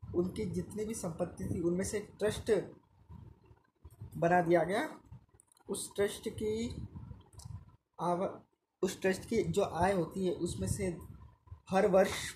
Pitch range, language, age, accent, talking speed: 135-185 Hz, Hindi, 20-39, native, 125 wpm